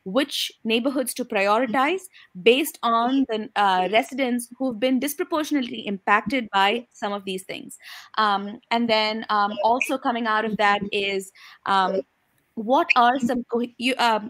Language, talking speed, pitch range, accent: English, 140 wpm, 215-270 Hz, Indian